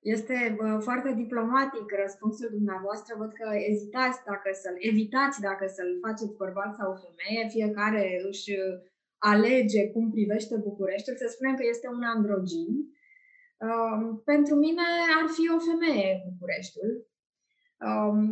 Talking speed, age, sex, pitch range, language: 130 wpm, 20-39, female, 205-245 Hz, Romanian